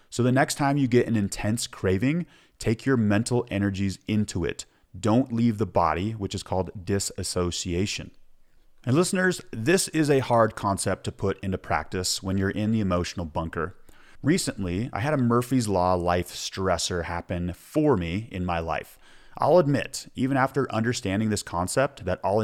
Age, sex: 30-49, male